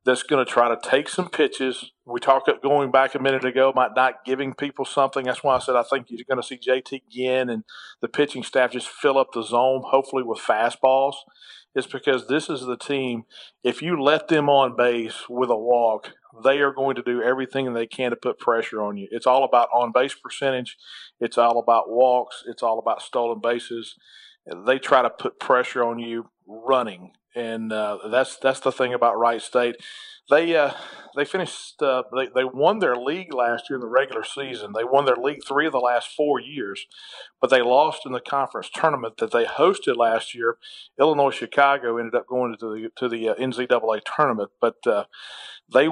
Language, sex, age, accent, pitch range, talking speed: English, male, 40-59, American, 120-135 Hz, 205 wpm